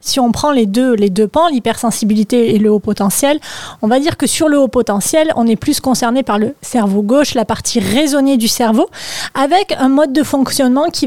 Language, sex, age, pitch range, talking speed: French, female, 20-39, 230-285 Hz, 215 wpm